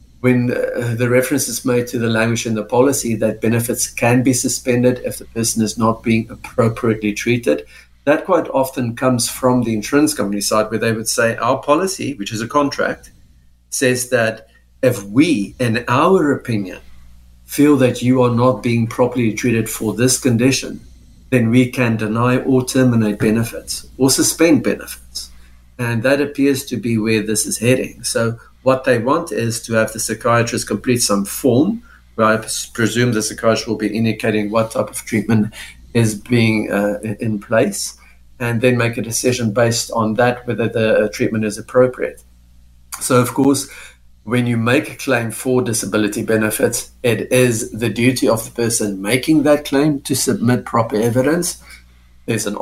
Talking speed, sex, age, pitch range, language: 170 wpm, male, 50-69, 105-125 Hz, English